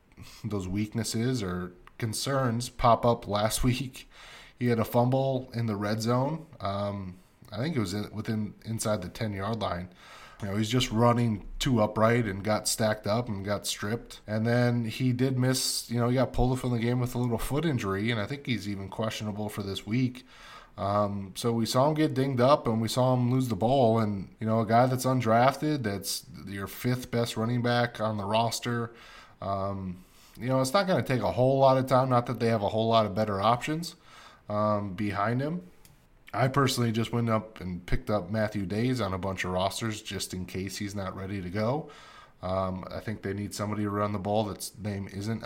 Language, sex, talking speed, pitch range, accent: English, male, 215 wpm, 105-125 Hz, American